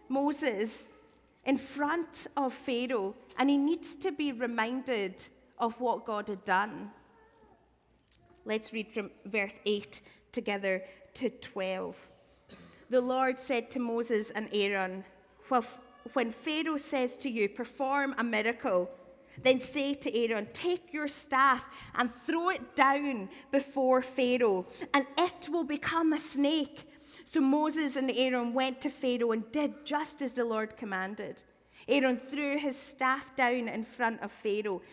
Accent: British